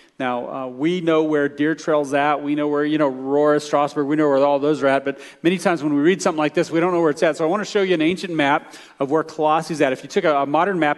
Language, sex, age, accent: English, male, 40-59, American